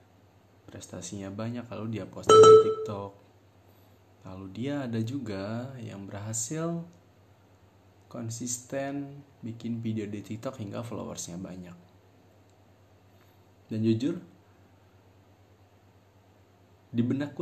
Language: Indonesian